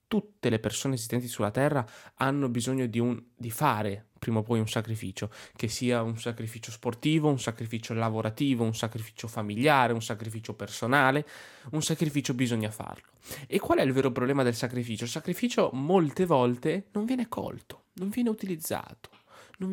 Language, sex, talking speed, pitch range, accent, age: Italian, male, 160 wpm, 115-155 Hz, native, 20-39